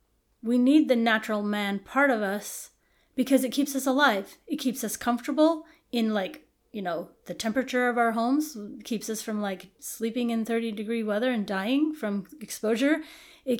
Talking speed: 175 wpm